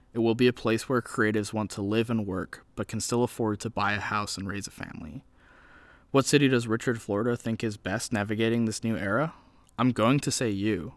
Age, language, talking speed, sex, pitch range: 20-39, English, 225 wpm, male, 100-120 Hz